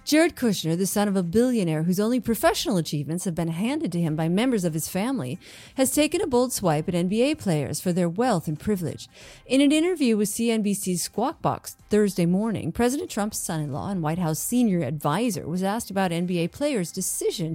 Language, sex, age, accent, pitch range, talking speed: English, female, 30-49, American, 170-245 Hz, 195 wpm